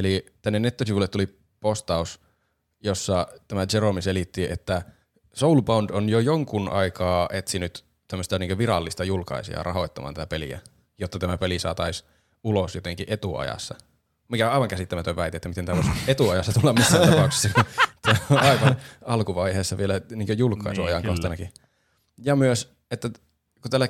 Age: 20-39